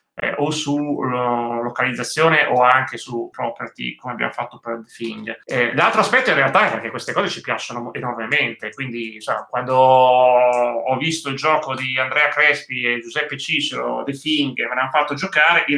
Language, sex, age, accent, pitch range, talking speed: Italian, male, 30-49, native, 125-150 Hz, 180 wpm